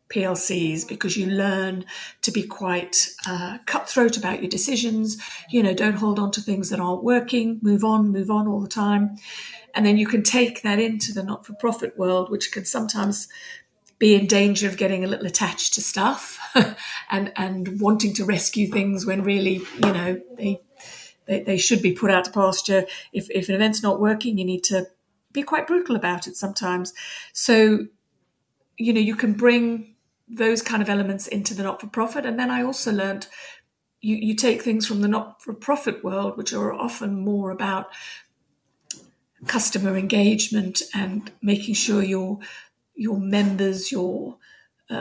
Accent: British